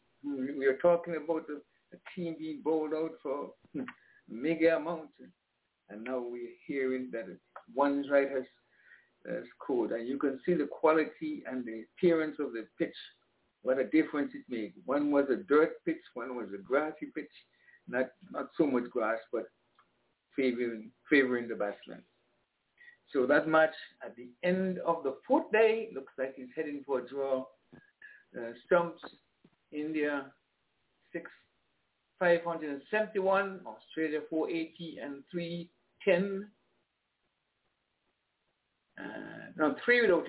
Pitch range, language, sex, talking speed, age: 130-180 Hz, English, male, 145 wpm, 60-79